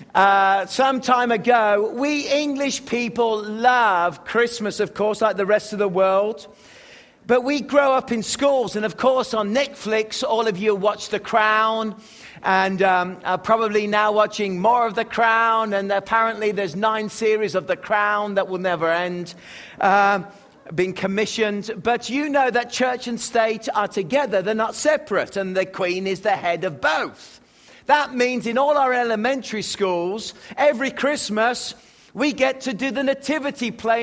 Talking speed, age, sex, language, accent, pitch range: 170 wpm, 50-69, male, English, British, 205-250 Hz